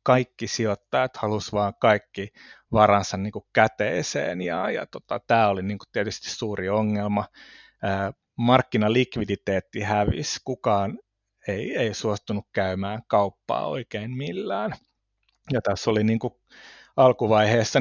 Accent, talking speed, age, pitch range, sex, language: native, 110 wpm, 30-49, 100-115 Hz, male, Finnish